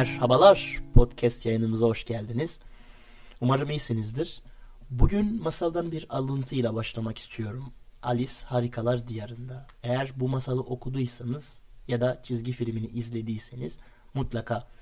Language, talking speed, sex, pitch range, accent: Turkish, 105 wpm, male, 120-125 Hz, native